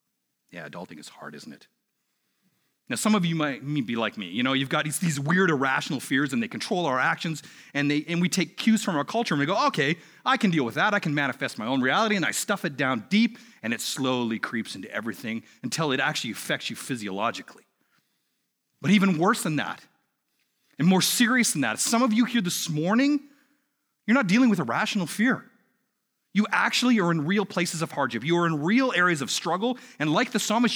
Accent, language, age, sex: American, English, 40-59, male